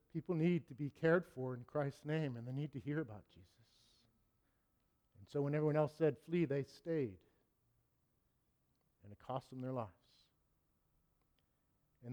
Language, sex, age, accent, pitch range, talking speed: English, male, 50-69, American, 115-155 Hz, 160 wpm